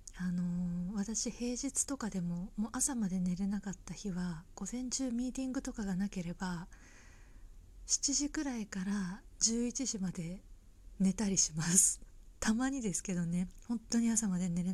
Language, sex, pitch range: Japanese, female, 180-245 Hz